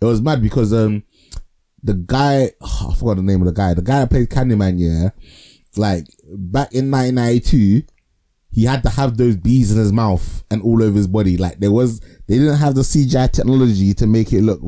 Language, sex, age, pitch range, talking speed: English, male, 20-39, 95-120 Hz, 215 wpm